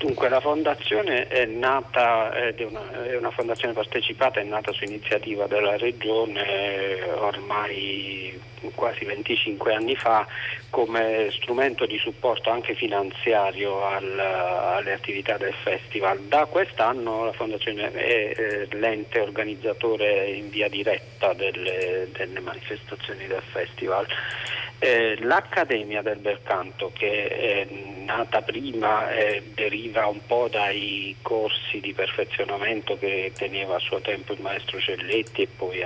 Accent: native